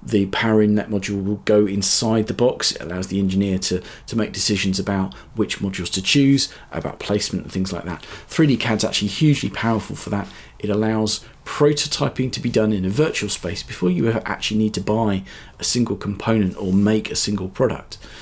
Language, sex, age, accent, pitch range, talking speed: English, male, 40-59, British, 95-110 Hz, 200 wpm